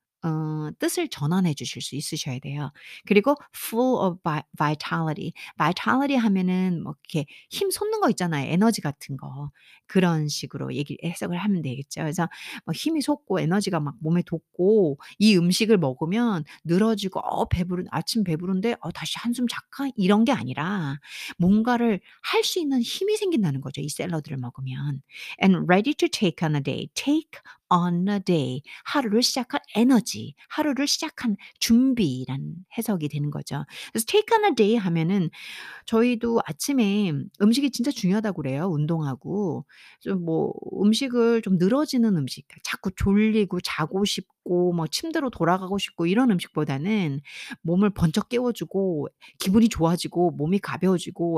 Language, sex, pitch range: Korean, female, 155-230 Hz